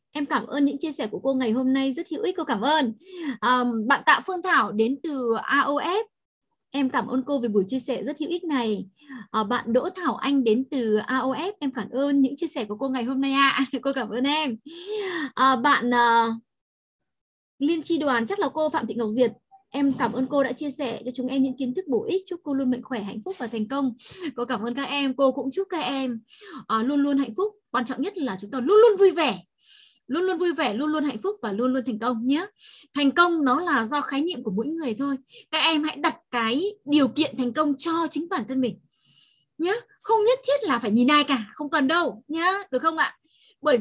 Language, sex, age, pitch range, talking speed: Vietnamese, female, 10-29, 245-320 Hz, 240 wpm